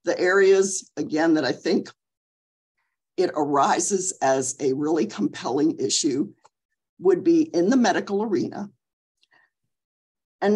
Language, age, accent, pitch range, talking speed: English, 50-69, American, 155-255 Hz, 115 wpm